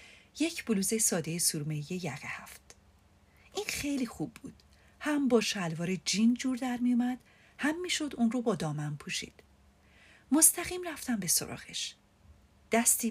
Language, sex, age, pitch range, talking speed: Persian, female, 40-59, 155-245 Hz, 135 wpm